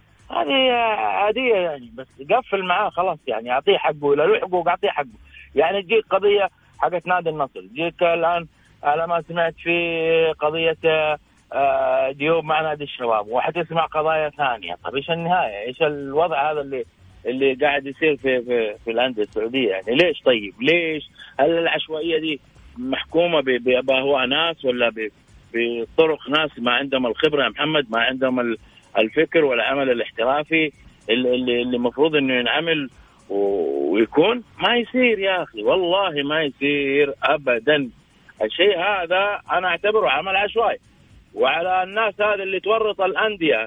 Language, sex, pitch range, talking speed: Arabic, male, 140-195 Hz, 135 wpm